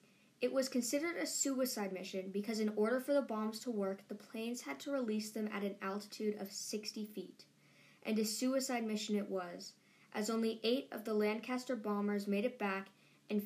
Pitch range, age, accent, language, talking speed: 195-235 Hz, 10-29, American, English, 190 wpm